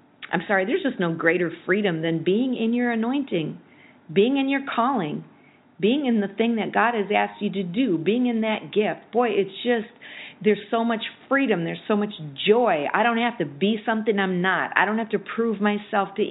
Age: 50-69